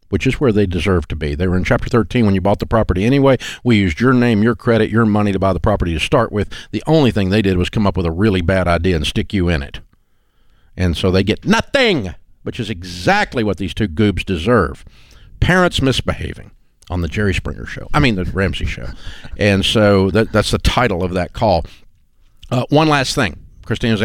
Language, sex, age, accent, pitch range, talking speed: English, male, 50-69, American, 90-115 Hz, 225 wpm